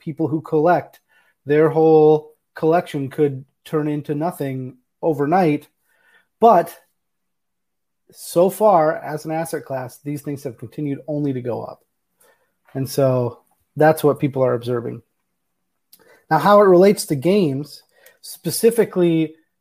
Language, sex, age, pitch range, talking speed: English, male, 30-49, 145-170 Hz, 120 wpm